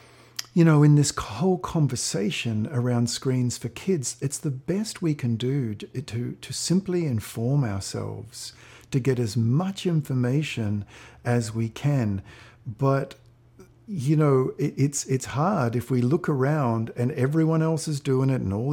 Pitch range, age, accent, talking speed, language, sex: 115-140 Hz, 50-69, Australian, 155 wpm, English, male